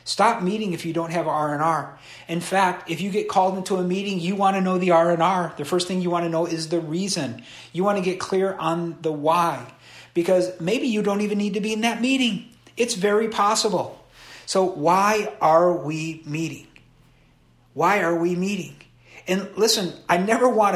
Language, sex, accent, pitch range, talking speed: English, male, American, 155-195 Hz, 195 wpm